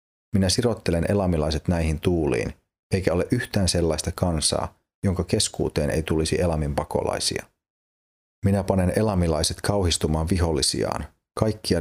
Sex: male